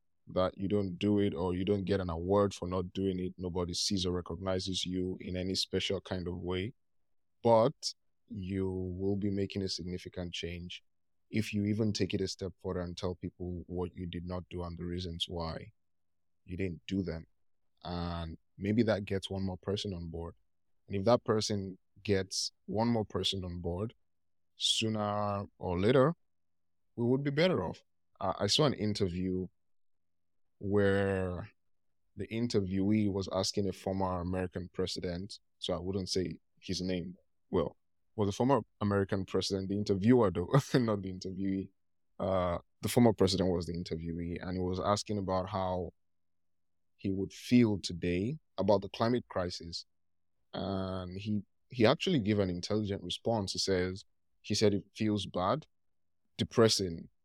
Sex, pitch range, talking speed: male, 85-100 Hz, 160 wpm